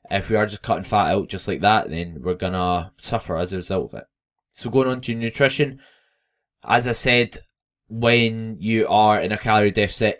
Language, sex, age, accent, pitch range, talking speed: English, male, 10-29, British, 95-110 Hz, 205 wpm